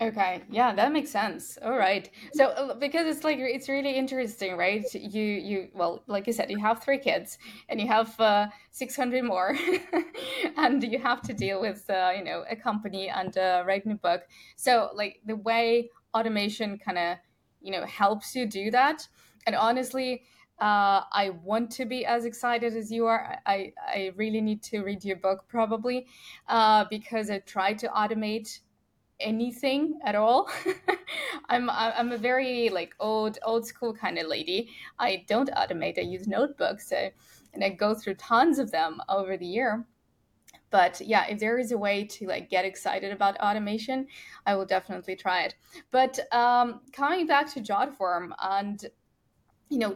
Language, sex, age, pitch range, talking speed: English, female, 20-39, 200-255 Hz, 175 wpm